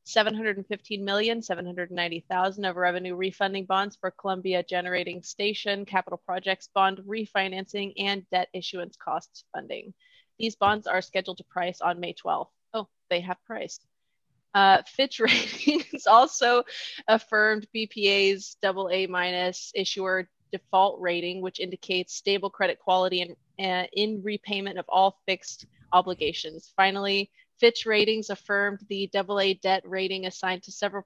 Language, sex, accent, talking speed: English, female, American, 150 wpm